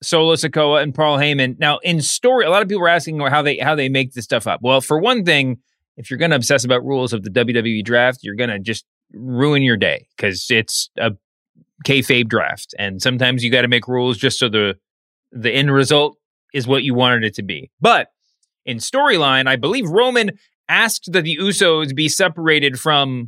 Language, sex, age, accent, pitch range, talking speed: English, male, 30-49, American, 120-150 Hz, 210 wpm